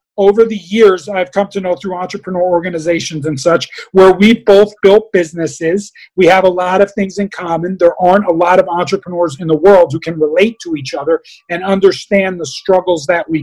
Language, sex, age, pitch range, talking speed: English, male, 40-59, 165-200 Hz, 205 wpm